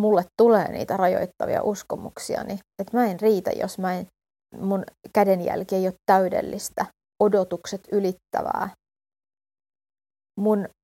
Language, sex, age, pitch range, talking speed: Finnish, female, 30-49, 185-215 Hz, 110 wpm